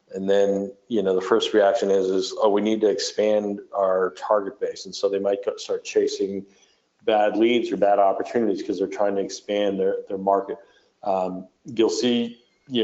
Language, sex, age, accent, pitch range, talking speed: English, male, 40-59, American, 100-115 Hz, 190 wpm